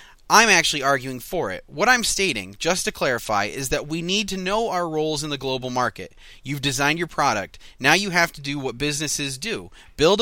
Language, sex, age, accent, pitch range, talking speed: English, male, 30-49, American, 130-185 Hz, 210 wpm